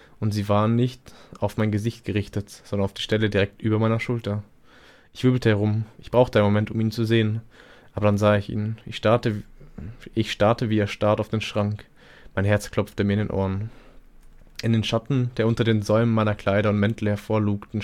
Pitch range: 100-115 Hz